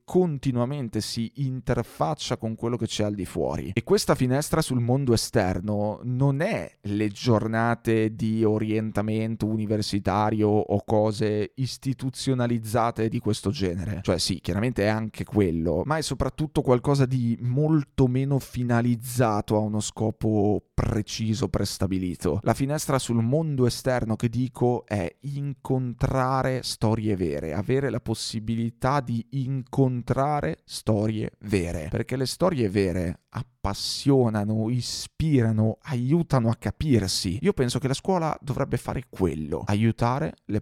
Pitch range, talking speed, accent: 105-125 Hz, 125 wpm, native